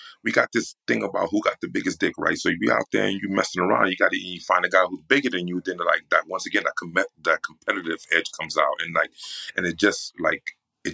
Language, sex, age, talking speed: English, male, 30-49, 270 wpm